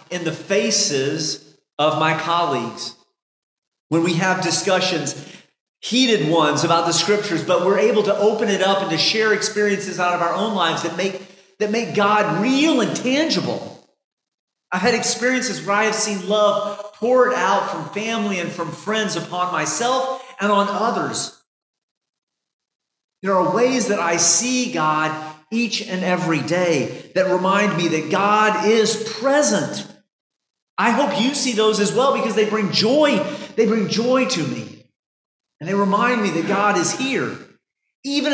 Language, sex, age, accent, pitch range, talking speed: English, male, 40-59, American, 170-225 Hz, 160 wpm